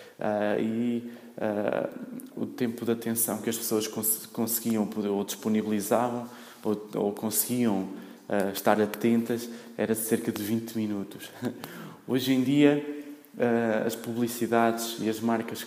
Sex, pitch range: male, 105-115 Hz